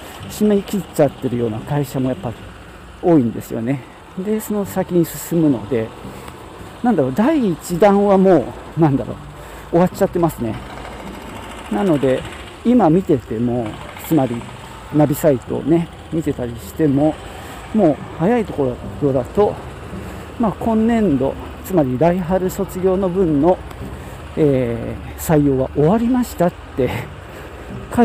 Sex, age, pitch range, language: male, 50-69, 120-185 Hz, Japanese